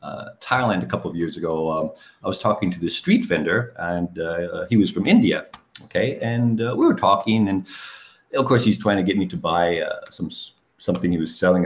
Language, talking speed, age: English, 225 wpm, 50-69